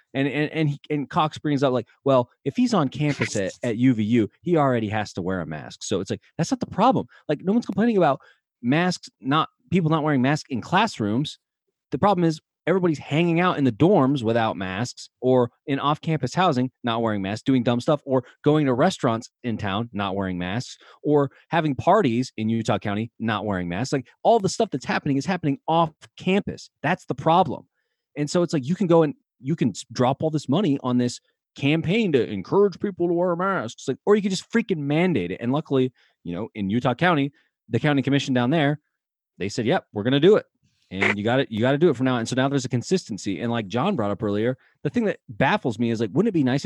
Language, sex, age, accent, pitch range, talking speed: English, male, 30-49, American, 115-165 Hz, 235 wpm